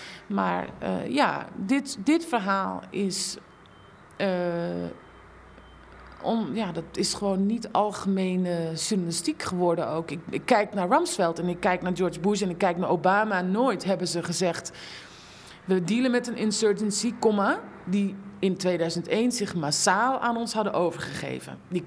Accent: Dutch